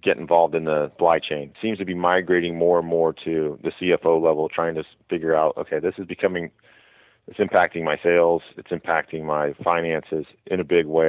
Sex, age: male, 40-59